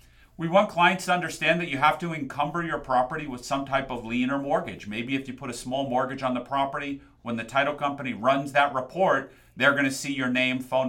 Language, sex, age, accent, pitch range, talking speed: English, male, 40-59, American, 110-140 Hz, 230 wpm